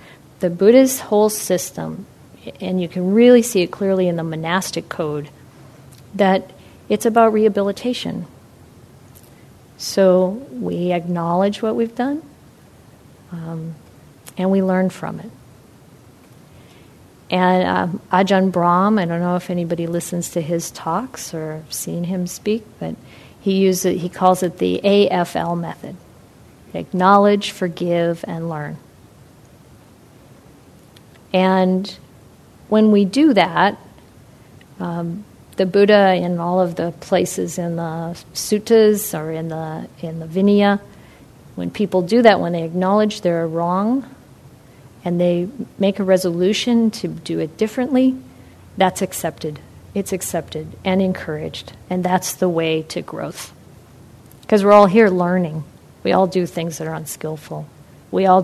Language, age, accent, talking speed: English, 40-59, American, 130 wpm